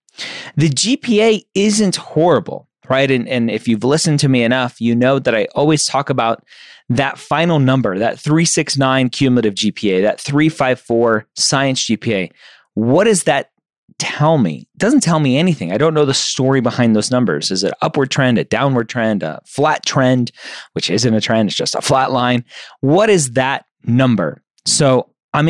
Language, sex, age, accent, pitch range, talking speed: English, male, 30-49, American, 115-155 Hz, 175 wpm